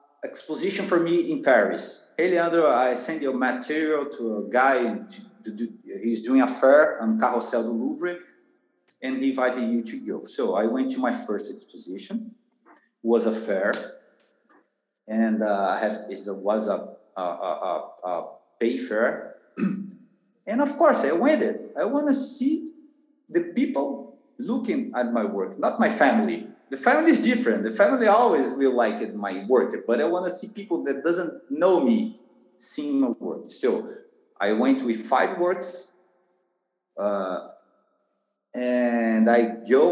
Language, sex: English, male